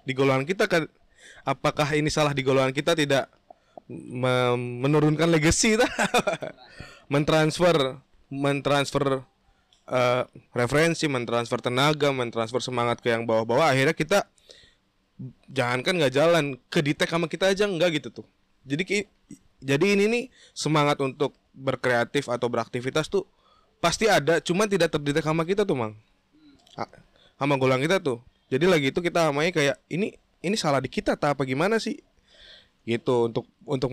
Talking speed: 140 wpm